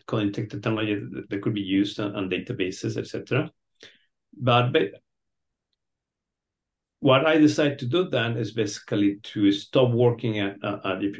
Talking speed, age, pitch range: 140 wpm, 50-69, 100-125 Hz